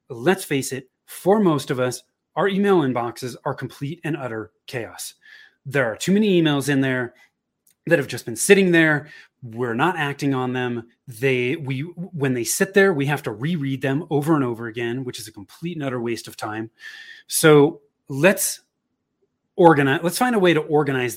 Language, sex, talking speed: English, male, 185 wpm